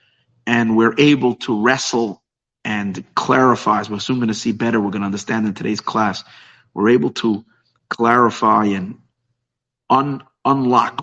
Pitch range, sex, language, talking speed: 115-135 Hz, male, English, 150 wpm